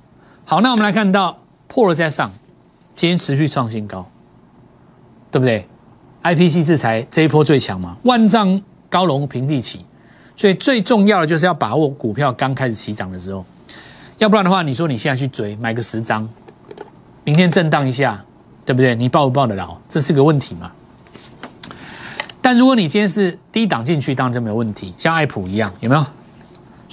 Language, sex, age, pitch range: Chinese, male, 30-49, 115-175 Hz